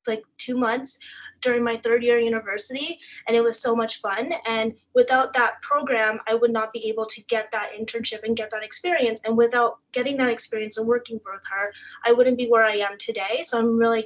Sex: female